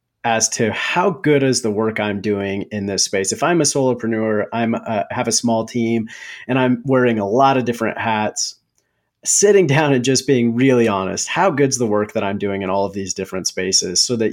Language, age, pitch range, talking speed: English, 30-49, 100-125 Hz, 215 wpm